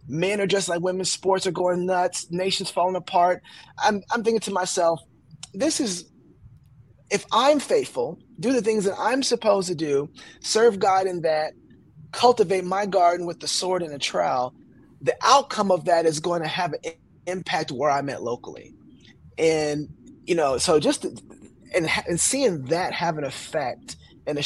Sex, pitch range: male, 150-205 Hz